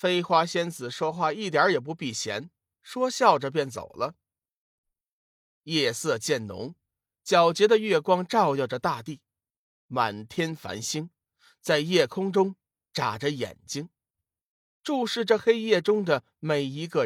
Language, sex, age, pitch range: Chinese, male, 50-69, 120-185 Hz